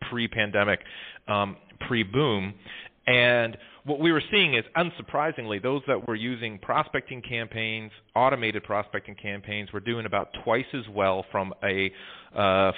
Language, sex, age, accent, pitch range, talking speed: English, male, 30-49, American, 100-120 Hz, 130 wpm